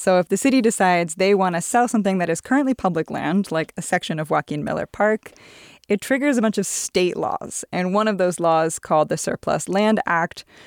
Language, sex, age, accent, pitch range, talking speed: English, female, 20-39, American, 165-210 Hz, 220 wpm